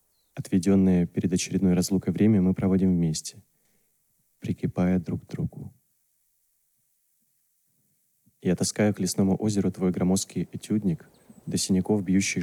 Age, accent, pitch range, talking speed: 20-39, native, 90-100 Hz, 110 wpm